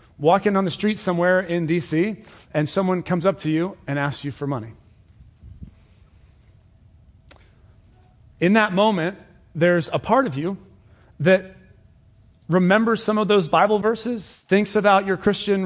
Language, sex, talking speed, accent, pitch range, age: English, male, 140 wpm, American, 165-215 Hz, 30-49